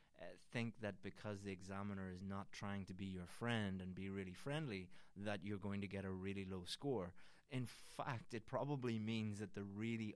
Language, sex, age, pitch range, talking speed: English, male, 20-39, 95-110 Hz, 195 wpm